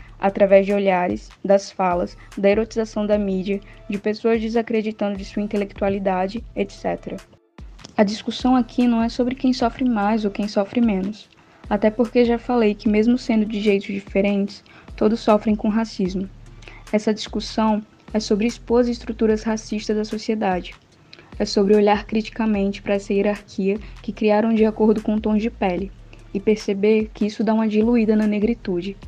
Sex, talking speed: female, 160 wpm